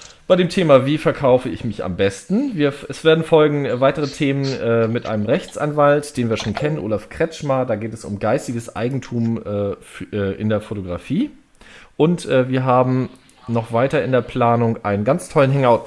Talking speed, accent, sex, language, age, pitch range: 180 wpm, German, male, English, 40-59, 110-140 Hz